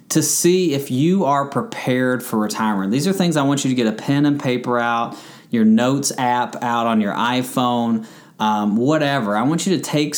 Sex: male